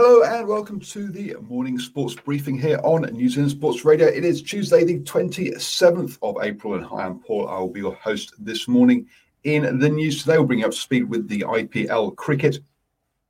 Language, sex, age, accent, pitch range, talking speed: English, male, 40-59, British, 120-195 Hz, 205 wpm